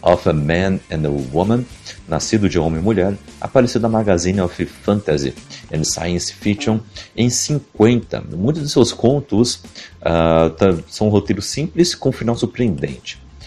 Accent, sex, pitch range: Brazilian, male, 85-115 Hz